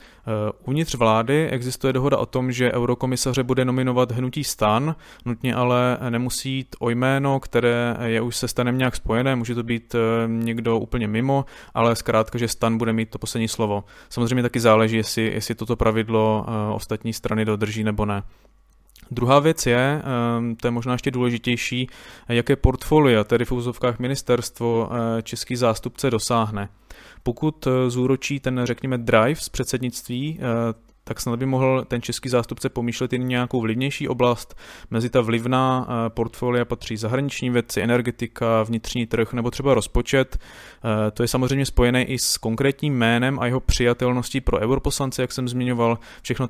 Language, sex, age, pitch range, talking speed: Czech, male, 20-39, 115-130 Hz, 160 wpm